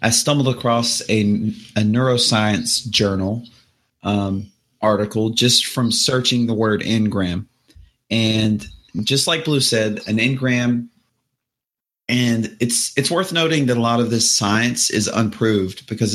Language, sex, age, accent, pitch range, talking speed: English, male, 30-49, American, 105-125 Hz, 135 wpm